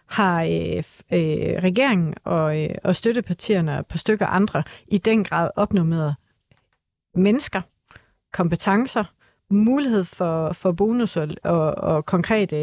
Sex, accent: female, native